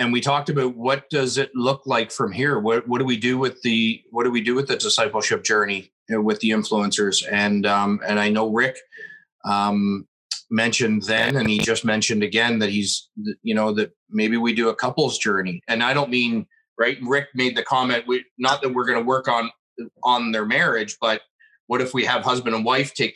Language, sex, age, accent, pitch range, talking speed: English, male, 30-49, American, 110-130 Hz, 210 wpm